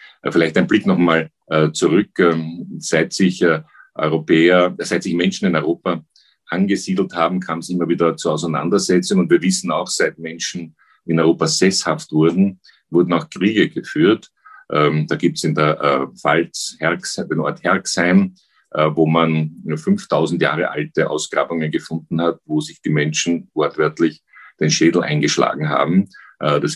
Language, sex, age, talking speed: German, male, 50-69, 140 wpm